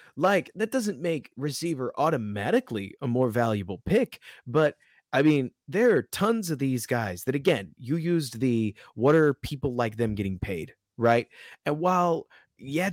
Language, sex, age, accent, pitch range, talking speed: English, male, 30-49, American, 110-145 Hz, 160 wpm